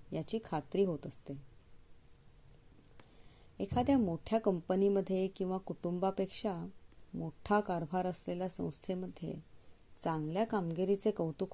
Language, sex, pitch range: Marathi, female, 165-210 Hz